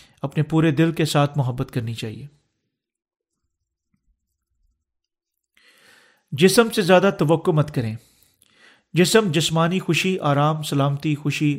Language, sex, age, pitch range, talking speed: Urdu, male, 40-59, 135-175 Hz, 105 wpm